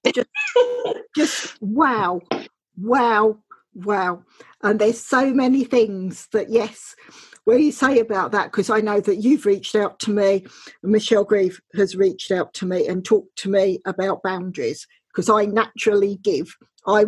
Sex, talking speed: female, 160 wpm